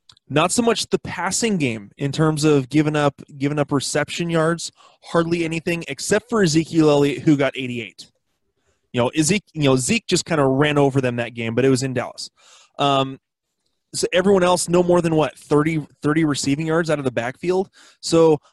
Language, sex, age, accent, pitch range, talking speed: English, male, 20-39, American, 130-160 Hz, 195 wpm